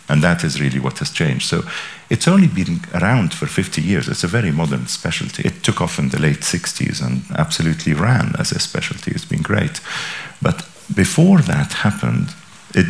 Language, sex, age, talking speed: English, male, 50-69, 190 wpm